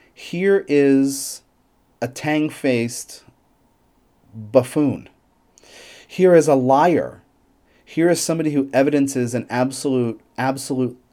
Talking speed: 95 wpm